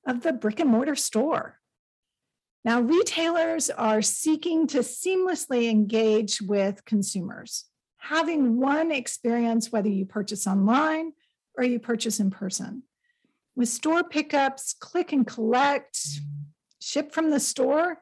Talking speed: 125 wpm